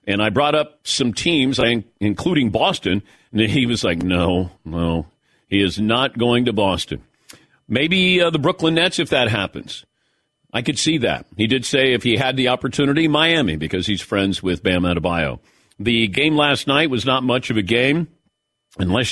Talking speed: 180 wpm